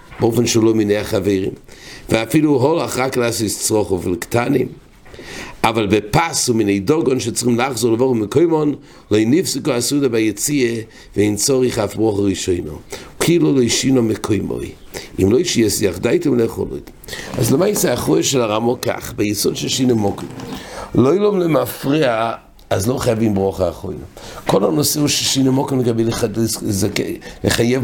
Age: 60-79